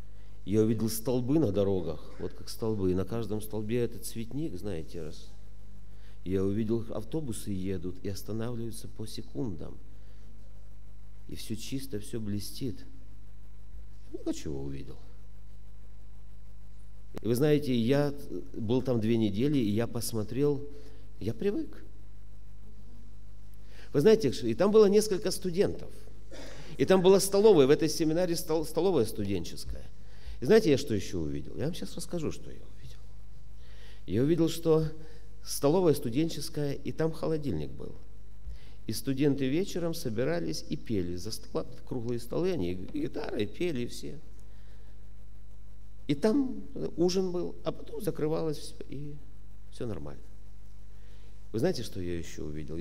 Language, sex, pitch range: Russian, male, 105-155 Hz